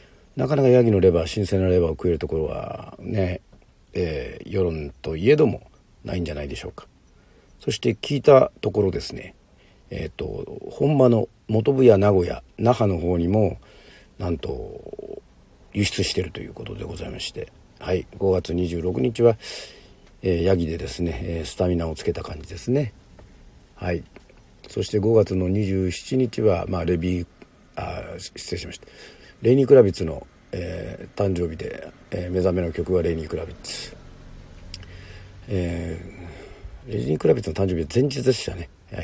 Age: 50-69